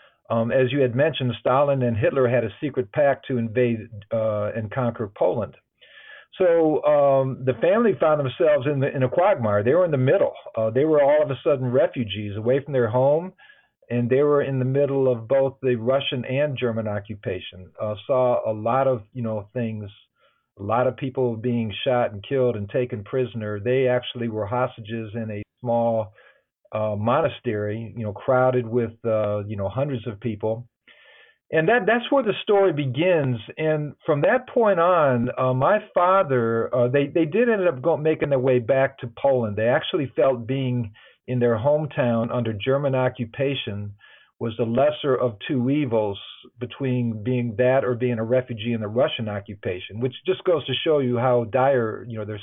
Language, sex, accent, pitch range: English, male, American, 115-135 Hz